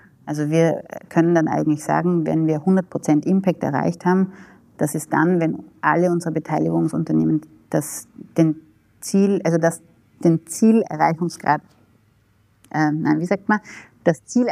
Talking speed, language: 135 wpm, German